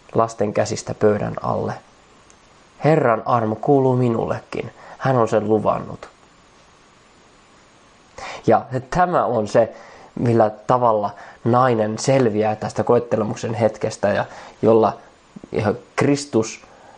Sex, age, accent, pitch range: male, 20-39, native, 110-135 Hz